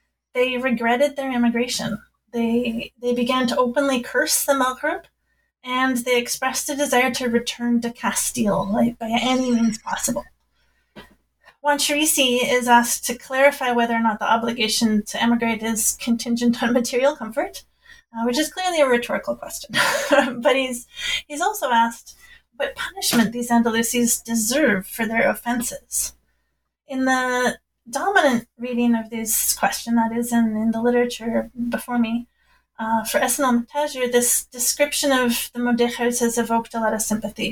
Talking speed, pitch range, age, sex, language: 150 wpm, 230-260 Hz, 30-49, female, English